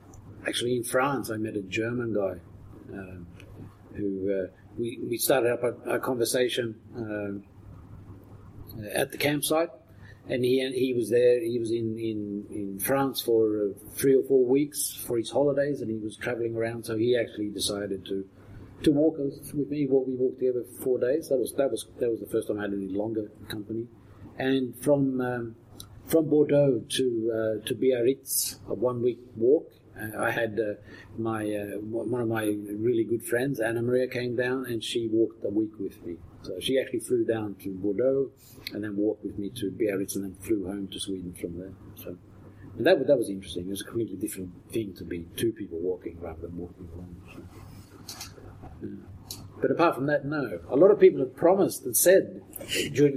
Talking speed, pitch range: 190 wpm, 100-125 Hz